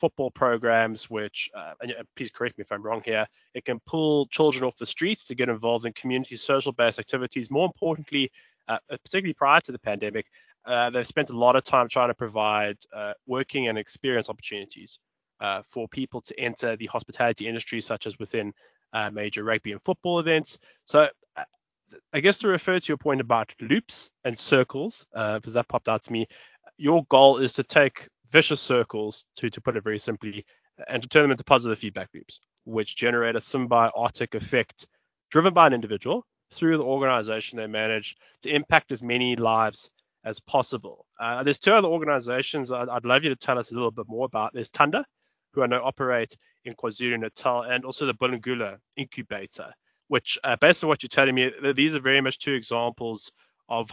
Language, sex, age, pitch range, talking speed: English, male, 20-39, 115-140 Hz, 190 wpm